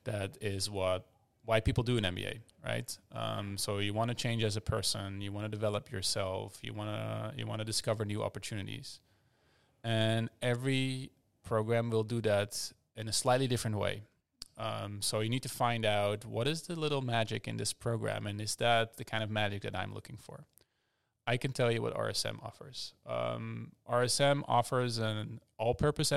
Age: 20-39